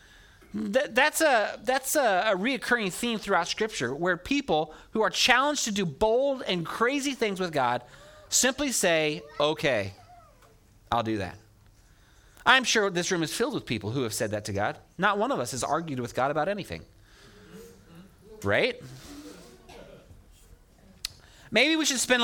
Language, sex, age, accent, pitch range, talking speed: English, male, 30-49, American, 145-230 Hz, 155 wpm